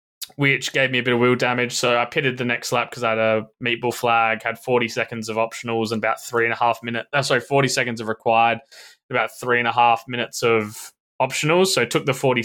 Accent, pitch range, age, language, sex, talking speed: Australian, 120-155 Hz, 20-39, English, male, 240 wpm